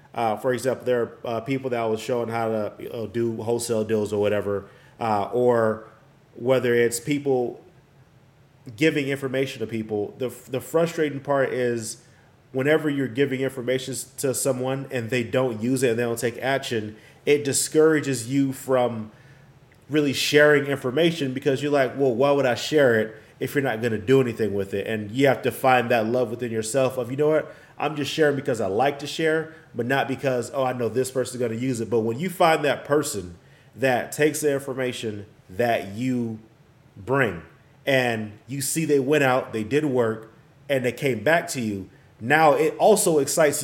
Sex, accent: male, American